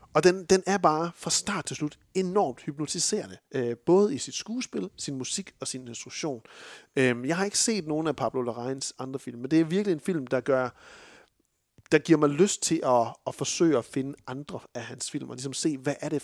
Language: Danish